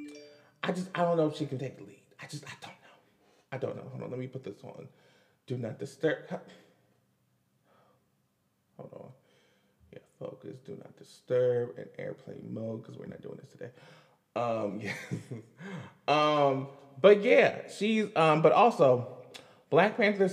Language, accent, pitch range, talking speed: English, American, 120-165 Hz, 165 wpm